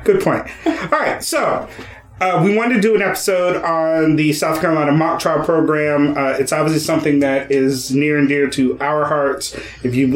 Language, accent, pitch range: English, American, 140-165 Hz